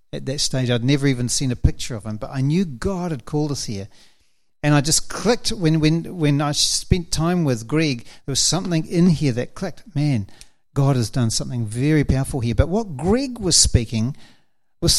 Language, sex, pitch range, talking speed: English, male, 125-170 Hz, 210 wpm